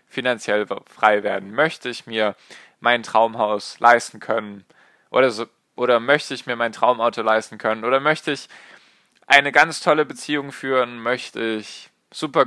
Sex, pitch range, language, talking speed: male, 110-130 Hz, German, 145 wpm